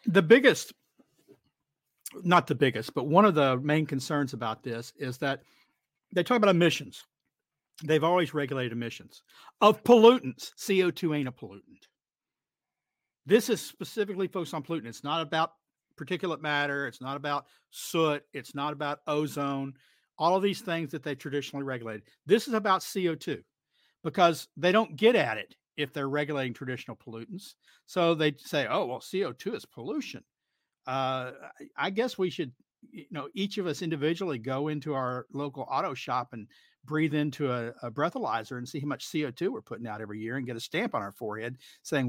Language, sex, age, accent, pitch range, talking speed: English, male, 50-69, American, 130-175 Hz, 170 wpm